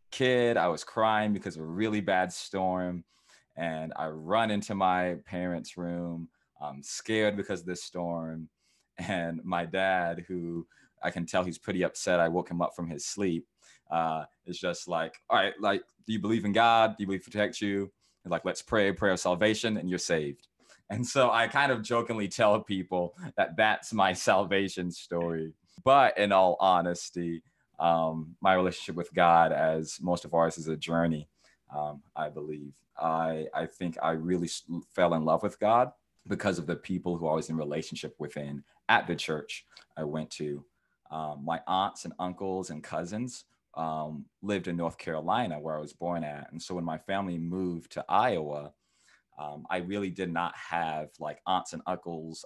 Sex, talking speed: male, 185 wpm